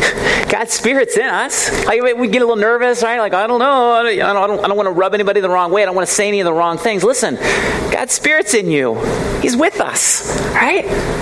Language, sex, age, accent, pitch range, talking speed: English, male, 30-49, American, 155-230 Hz, 235 wpm